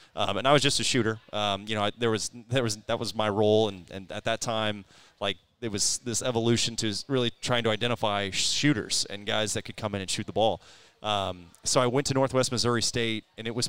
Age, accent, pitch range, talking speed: 30-49, American, 105-125 Hz, 245 wpm